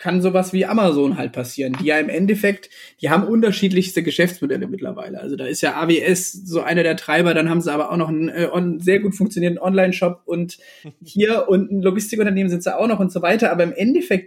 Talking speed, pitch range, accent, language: 220 wpm, 170-210 Hz, German, German